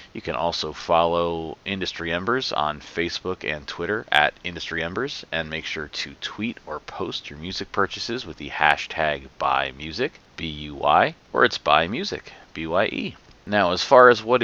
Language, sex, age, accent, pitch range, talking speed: English, male, 40-59, American, 80-100 Hz, 160 wpm